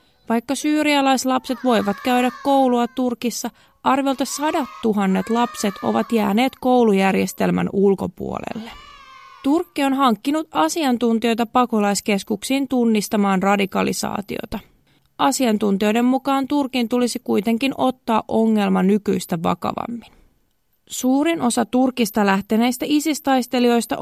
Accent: native